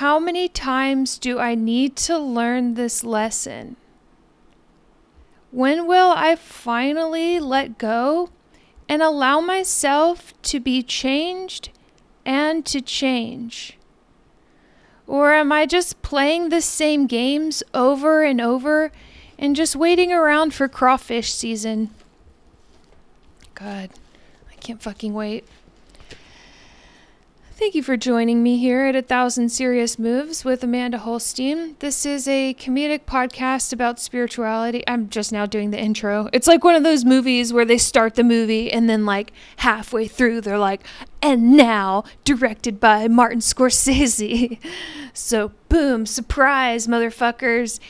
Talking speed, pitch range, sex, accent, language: 130 wpm, 230-290 Hz, female, American, English